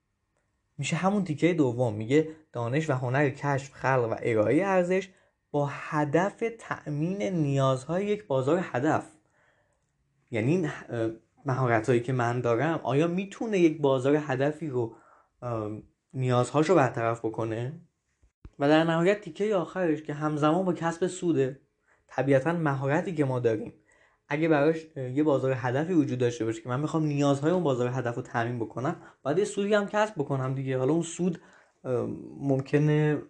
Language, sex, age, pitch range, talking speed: Persian, male, 20-39, 130-165 Hz, 140 wpm